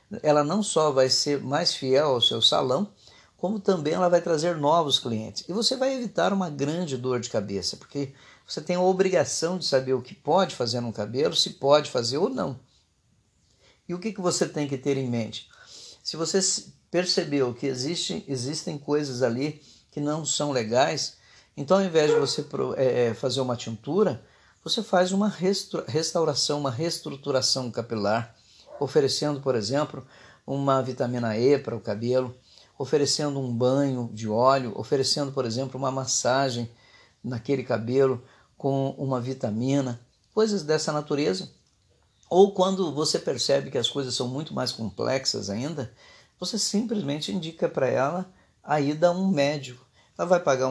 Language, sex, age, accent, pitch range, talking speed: Portuguese, male, 50-69, Brazilian, 125-165 Hz, 155 wpm